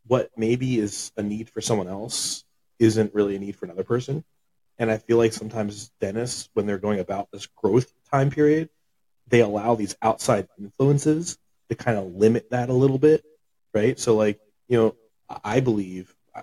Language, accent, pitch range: English, American, 105-125 Hz